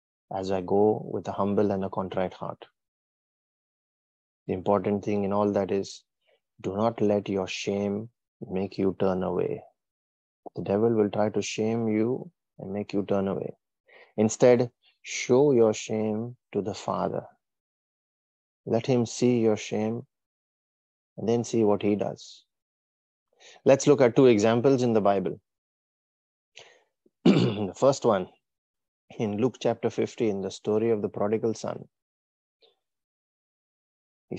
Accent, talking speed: Indian, 140 wpm